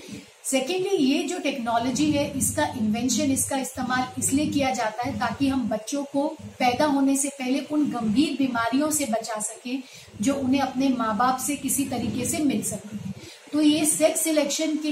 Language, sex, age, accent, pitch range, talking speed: Hindi, female, 40-59, native, 235-285 Hz, 175 wpm